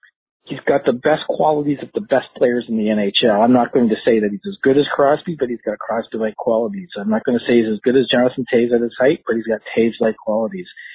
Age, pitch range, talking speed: 40-59, 110-150 Hz, 265 wpm